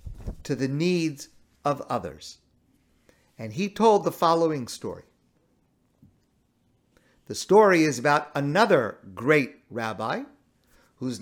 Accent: American